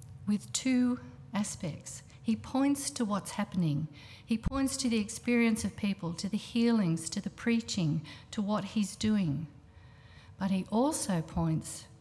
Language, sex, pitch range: English, female, 145-210 Hz